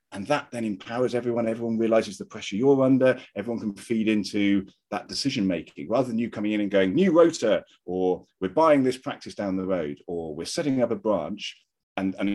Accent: British